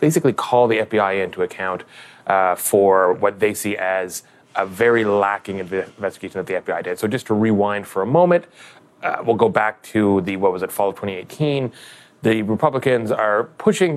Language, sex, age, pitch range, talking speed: English, male, 30-49, 100-130 Hz, 185 wpm